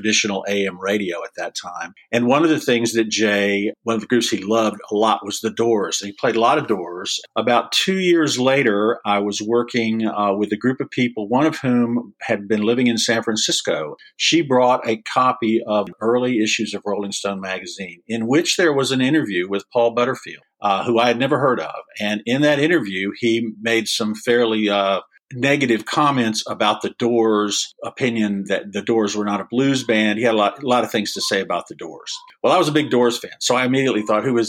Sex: male